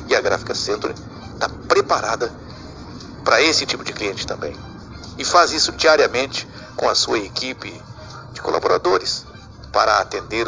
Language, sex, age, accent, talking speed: Portuguese, male, 60-79, Brazilian, 135 wpm